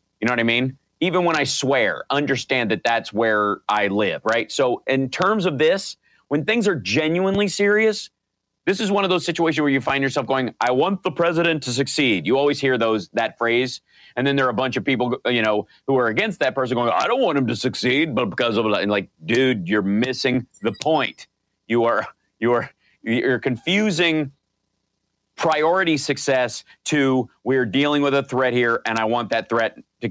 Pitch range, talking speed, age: 110-140 Hz, 205 wpm, 40-59